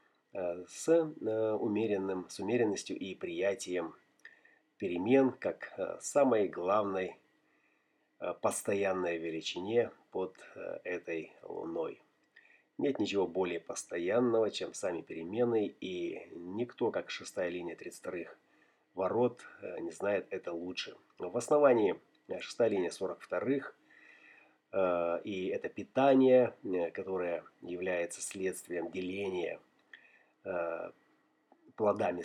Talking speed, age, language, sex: 85 wpm, 30-49, Russian, male